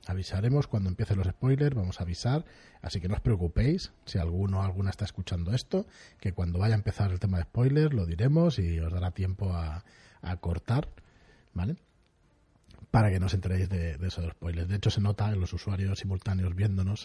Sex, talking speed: male, 200 wpm